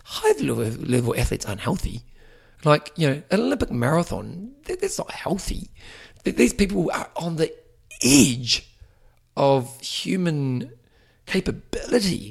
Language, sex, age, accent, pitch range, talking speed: English, male, 40-59, British, 115-175 Hz, 110 wpm